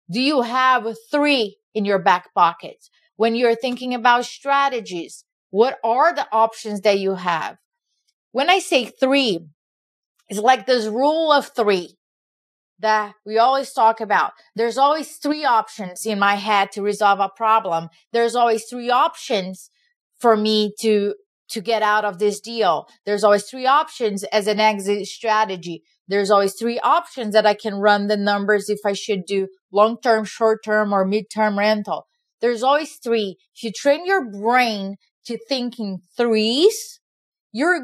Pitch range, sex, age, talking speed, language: 205-255 Hz, female, 30-49, 155 wpm, English